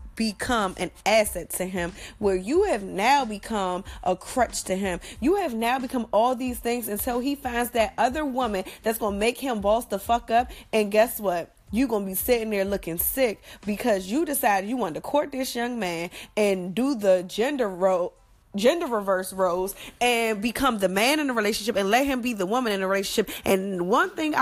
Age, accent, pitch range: 20-39, American, 190-245 Hz